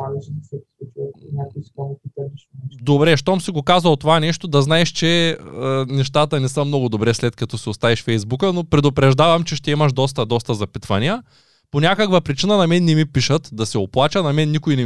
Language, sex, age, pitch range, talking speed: Bulgarian, male, 20-39, 125-165 Hz, 180 wpm